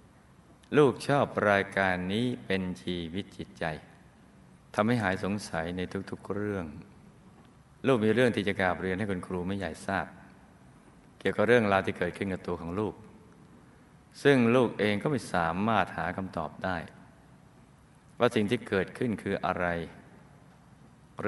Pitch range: 90-110 Hz